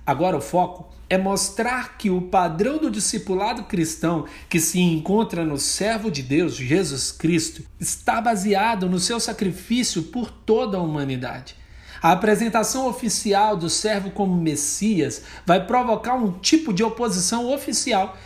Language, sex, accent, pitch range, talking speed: Portuguese, male, Brazilian, 170-230 Hz, 140 wpm